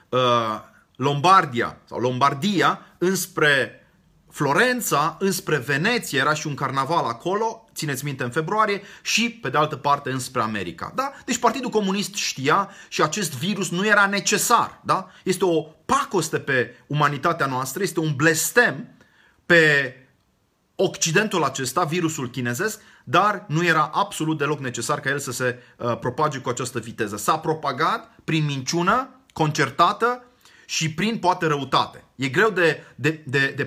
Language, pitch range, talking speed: Romanian, 140-185 Hz, 135 wpm